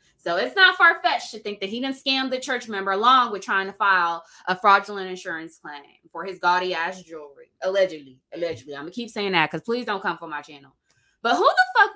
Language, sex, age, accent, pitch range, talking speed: English, female, 20-39, American, 165-225 Hz, 225 wpm